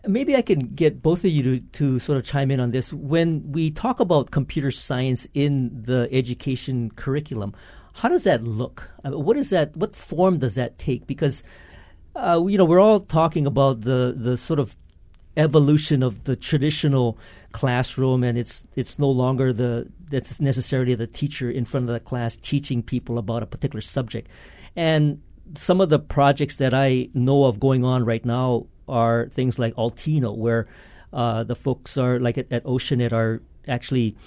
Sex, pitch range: male, 120-145 Hz